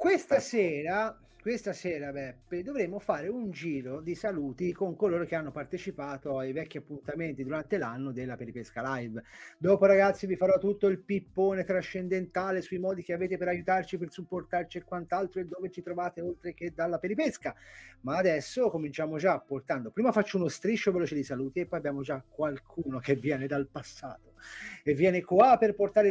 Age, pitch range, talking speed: 30-49, 145-205 Hz, 175 wpm